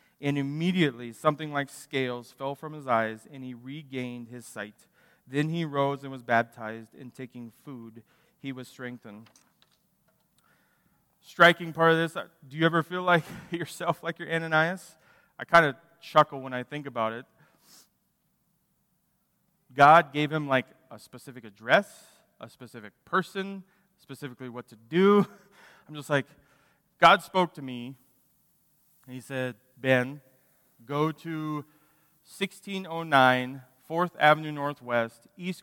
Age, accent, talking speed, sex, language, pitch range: 30-49, American, 135 wpm, male, English, 130-170 Hz